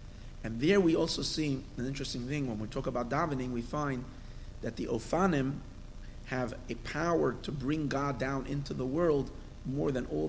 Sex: male